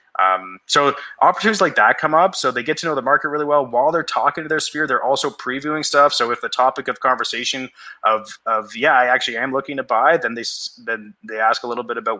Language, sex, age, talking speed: English, male, 20-39, 245 wpm